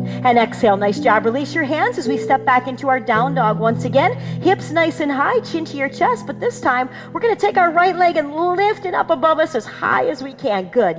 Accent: American